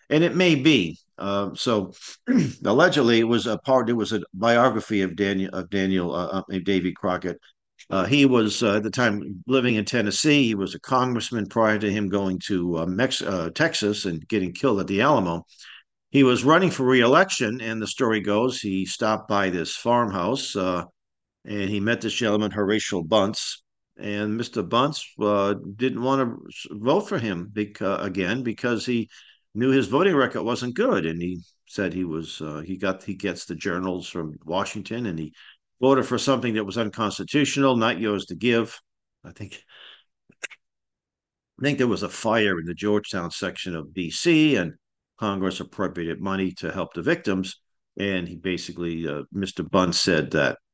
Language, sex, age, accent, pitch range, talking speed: English, male, 50-69, American, 95-120 Hz, 175 wpm